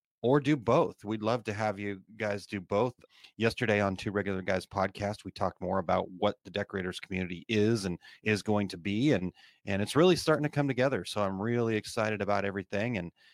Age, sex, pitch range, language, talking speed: 30-49, male, 95-115 Hz, English, 205 wpm